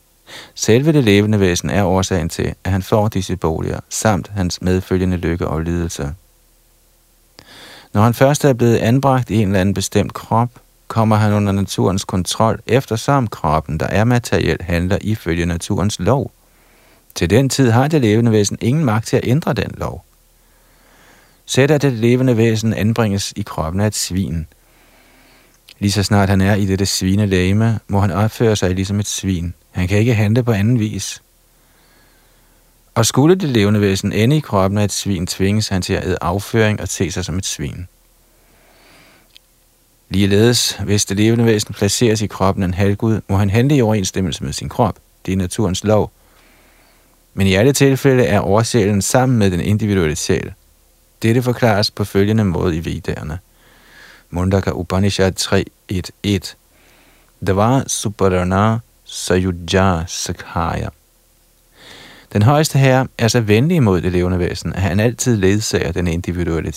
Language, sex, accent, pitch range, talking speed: Danish, male, native, 95-115 Hz, 160 wpm